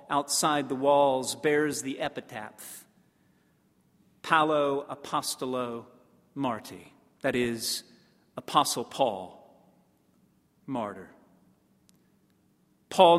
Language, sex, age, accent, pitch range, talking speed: English, male, 40-59, American, 130-155 Hz, 70 wpm